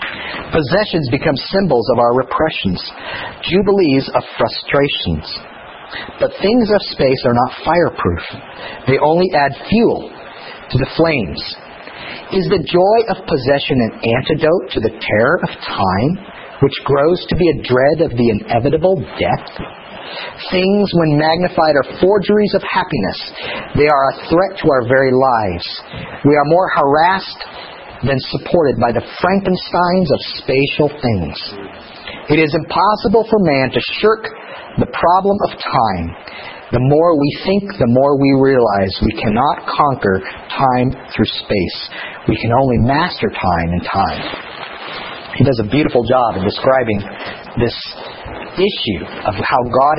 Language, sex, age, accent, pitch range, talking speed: English, male, 50-69, American, 125-180 Hz, 140 wpm